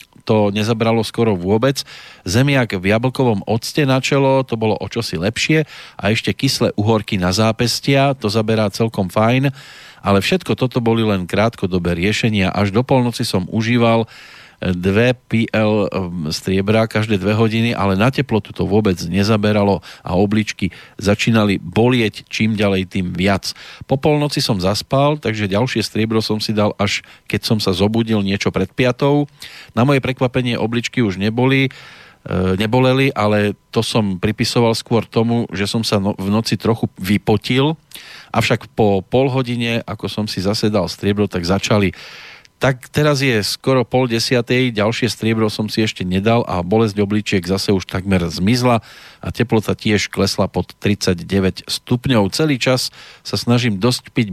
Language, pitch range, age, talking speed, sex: Slovak, 100-125 Hz, 40-59, 150 wpm, male